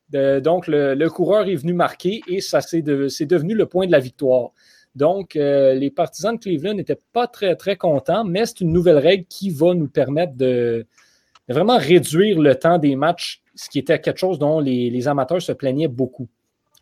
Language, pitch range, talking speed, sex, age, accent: French, 140-185 Hz, 205 wpm, male, 30-49, Canadian